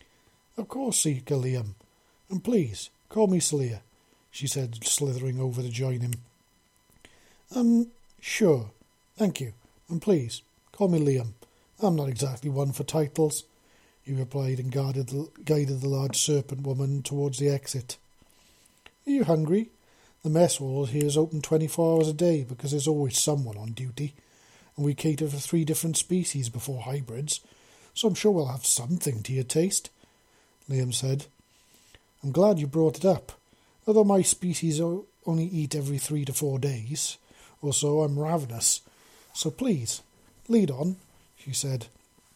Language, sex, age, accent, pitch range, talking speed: English, male, 40-59, British, 130-165 Hz, 155 wpm